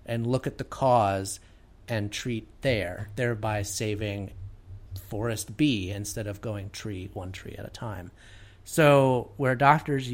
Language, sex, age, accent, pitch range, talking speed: English, male, 30-49, American, 100-135 Hz, 140 wpm